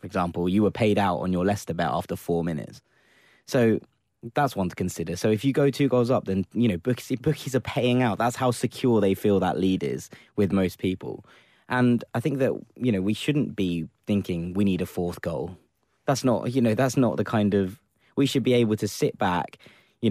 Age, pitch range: 20-39, 95-125 Hz